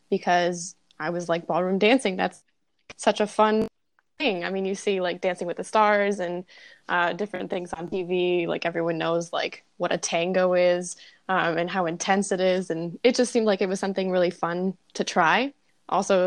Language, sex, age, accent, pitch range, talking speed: English, female, 10-29, American, 175-210 Hz, 200 wpm